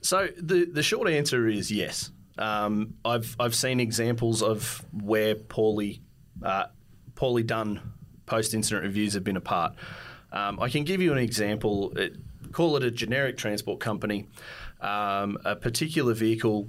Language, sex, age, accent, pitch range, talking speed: English, male, 30-49, Australian, 105-130 Hz, 150 wpm